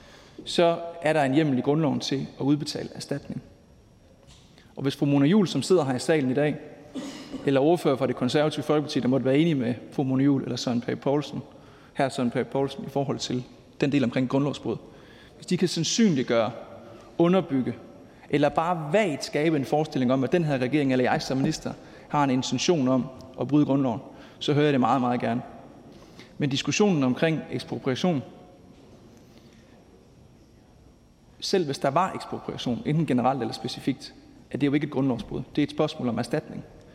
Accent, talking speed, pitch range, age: native, 180 wpm, 135-185 Hz, 30-49